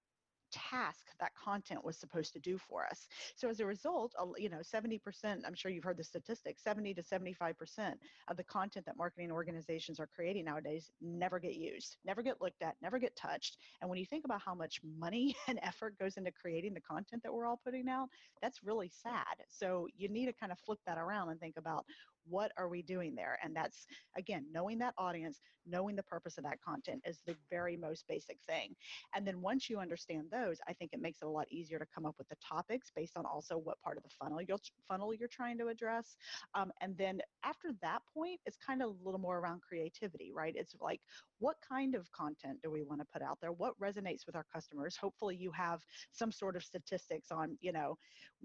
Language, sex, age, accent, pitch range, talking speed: English, female, 40-59, American, 165-220 Hz, 220 wpm